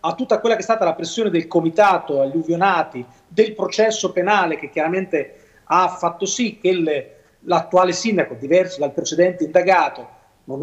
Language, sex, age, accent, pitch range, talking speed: Italian, male, 30-49, native, 160-200 Hz, 165 wpm